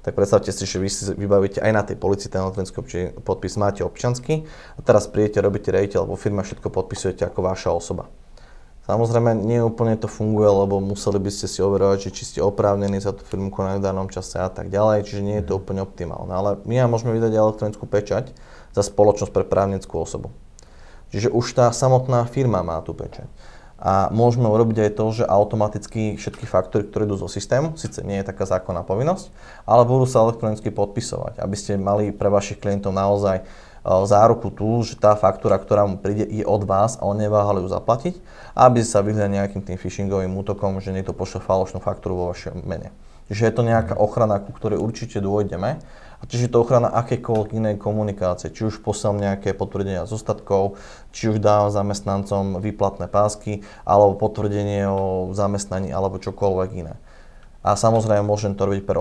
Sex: male